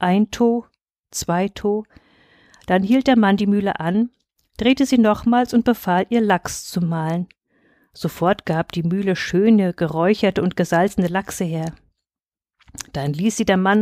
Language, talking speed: German, 150 wpm